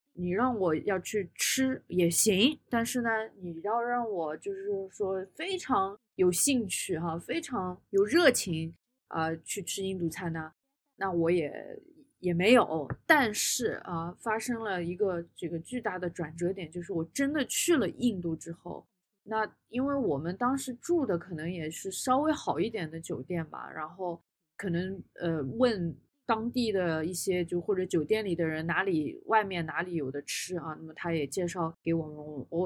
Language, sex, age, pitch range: Chinese, female, 20-39, 170-240 Hz